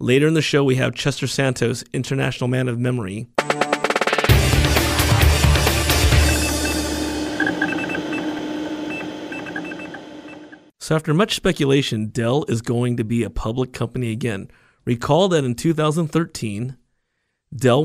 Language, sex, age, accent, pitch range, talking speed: English, male, 30-49, American, 115-145 Hz, 100 wpm